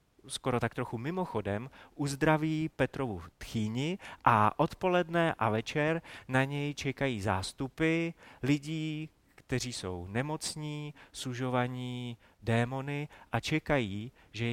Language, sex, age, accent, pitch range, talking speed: Czech, male, 30-49, native, 105-135 Hz, 100 wpm